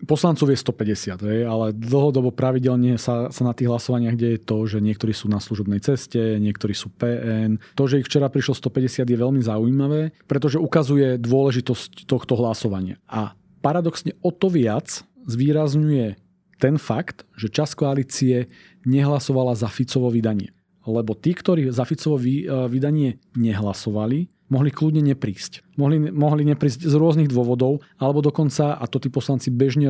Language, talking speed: Slovak, 145 wpm